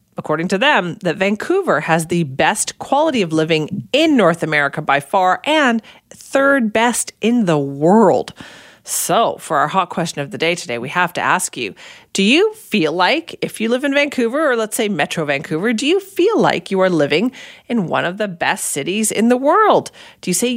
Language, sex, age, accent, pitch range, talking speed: English, female, 40-59, American, 165-245 Hz, 200 wpm